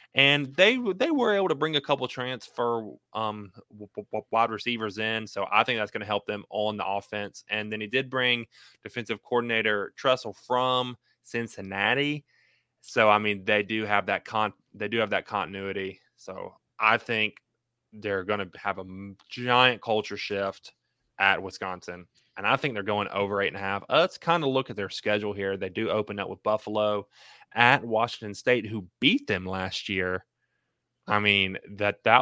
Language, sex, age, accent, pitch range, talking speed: English, male, 20-39, American, 100-125 Hz, 175 wpm